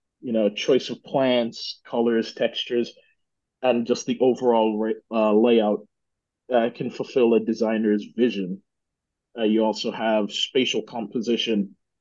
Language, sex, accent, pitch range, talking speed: English, male, American, 105-125 Hz, 125 wpm